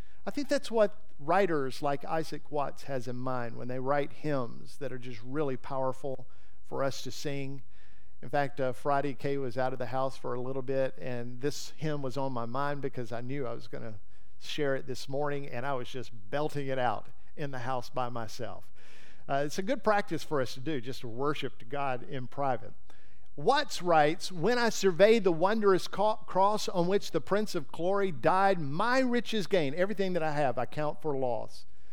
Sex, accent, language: male, American, English